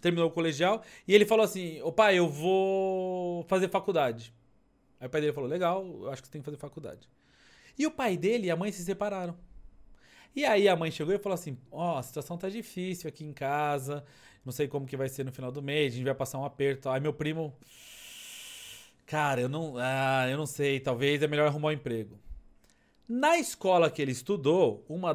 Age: 30-49